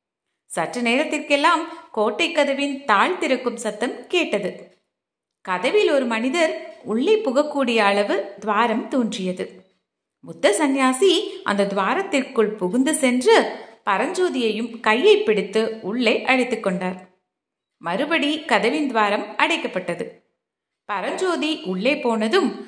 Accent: native